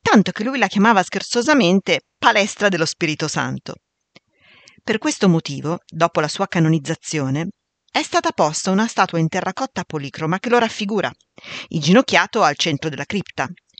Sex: female